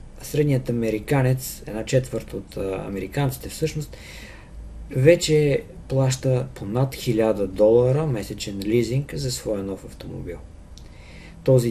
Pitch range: 110-135 Hz